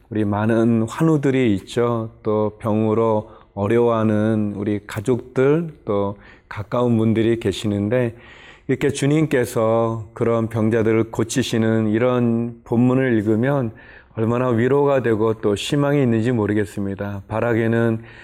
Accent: native